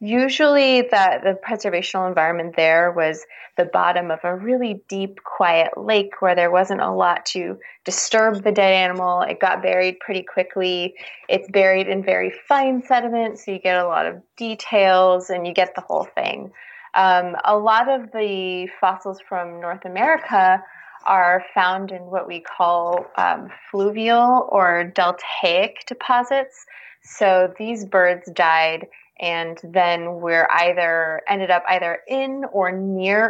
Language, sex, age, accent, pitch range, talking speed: English, female, 20-39, American, 180-225 Hz, 150 wpm